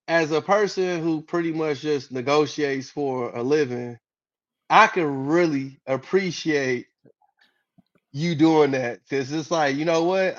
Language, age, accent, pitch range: English, 20-39, American, 135-165 Hz